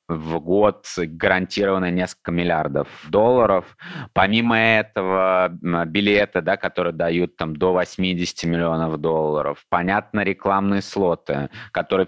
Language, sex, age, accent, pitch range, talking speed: Russian, male, 20-39, native, 85-100 Hz, 105 wpm